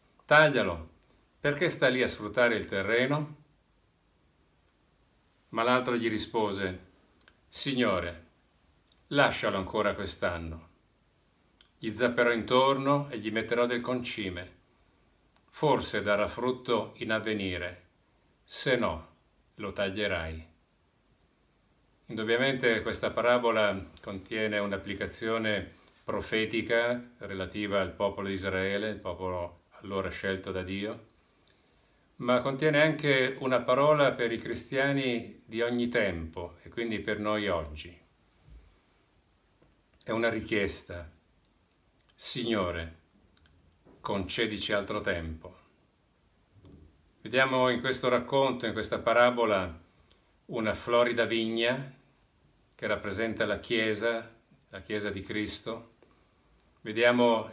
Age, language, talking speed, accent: 50-69, Italian, 95 wpm, native